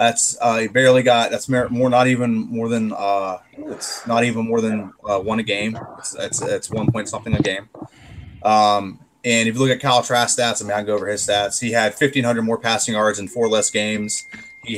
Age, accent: 20-39, American